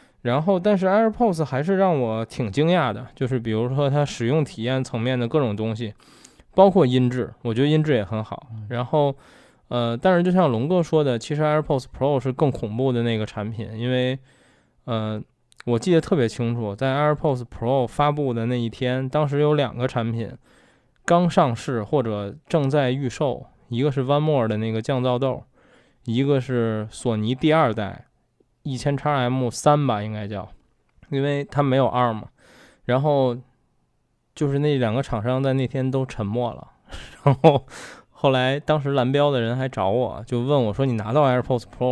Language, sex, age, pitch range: Chinese, male, 20-39, 115-145 Hz